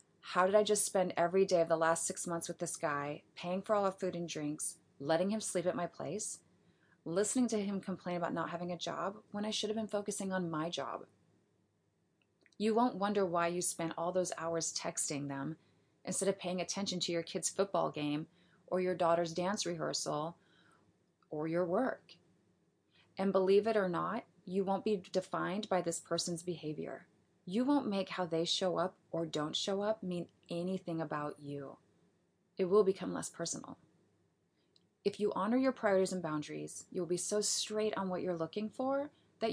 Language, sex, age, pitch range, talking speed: English, female, 30-49, 165-195 Hz, 190 wpm